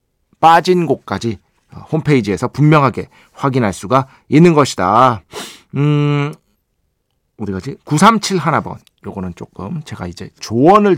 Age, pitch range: 40-59, 115-170 Hz